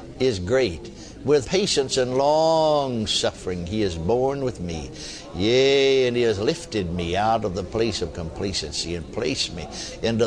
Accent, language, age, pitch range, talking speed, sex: American, English, 60-79, 95-140 Hz, 160 wpm, male